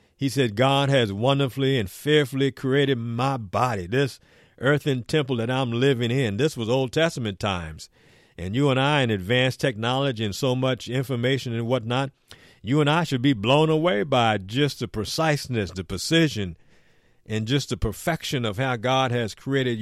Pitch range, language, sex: 105-135 Hz, English, male